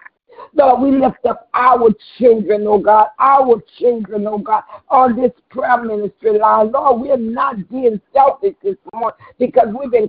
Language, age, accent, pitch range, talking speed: English, 60-79, American, 210-255 Hz, 165 wpm